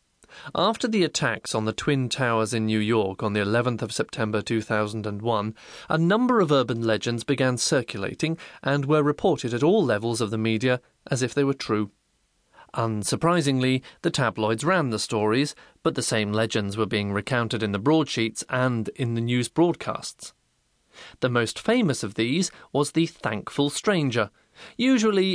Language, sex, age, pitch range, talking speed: English, male, 30-49, 110-145 Hz, 160 wpm